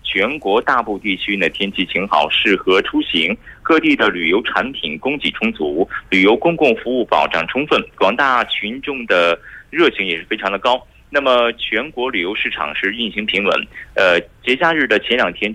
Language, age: Korean, 30-49